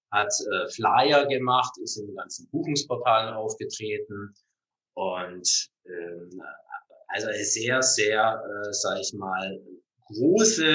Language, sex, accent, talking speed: German, male, German, 115 wpm